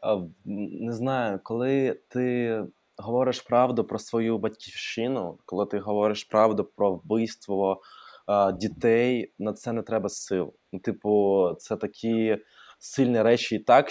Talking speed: 120 wpm